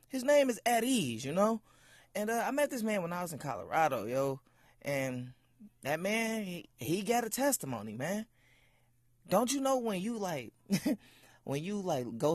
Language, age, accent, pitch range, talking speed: English, 20-39, American, 150-245 Hz, 185 wpm